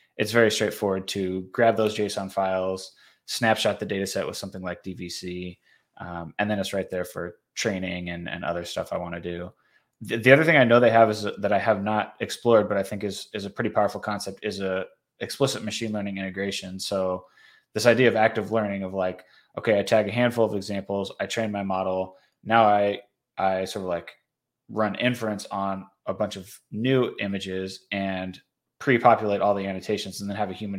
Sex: male